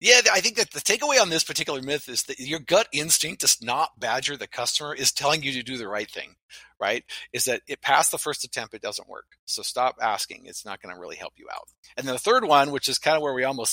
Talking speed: 265 wpm